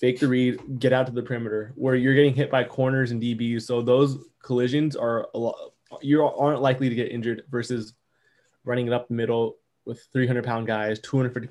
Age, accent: 20-39, American